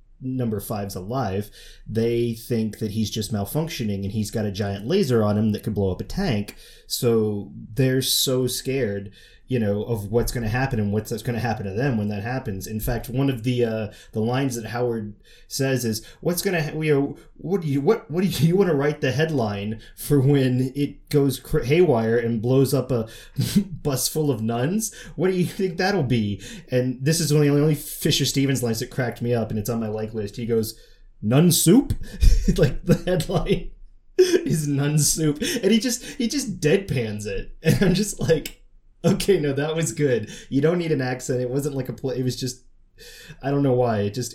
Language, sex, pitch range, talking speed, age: English, male, 110-145 Hz, 215 wpm, 30-49